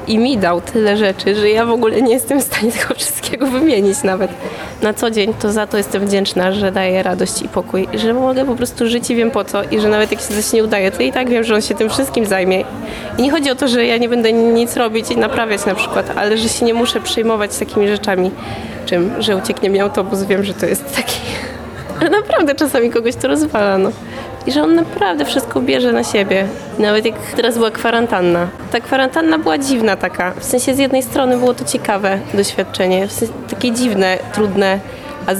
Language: Polish